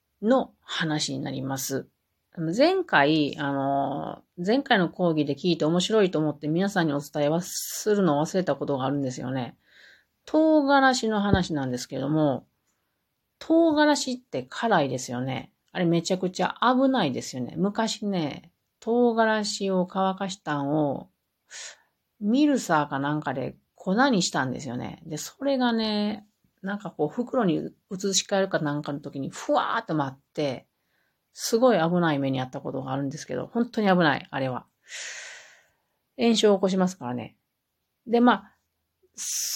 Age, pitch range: 40-59, 145-220 Hz